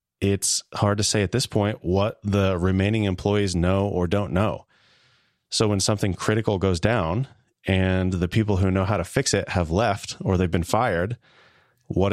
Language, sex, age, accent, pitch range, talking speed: English, male, 30-49, American, 90-110 Hz, 185 wpm